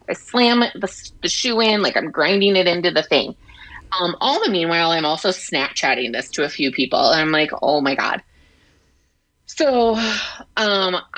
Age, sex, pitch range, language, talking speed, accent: 20-39, female, 160-210 Hz, English, 175 wpm, American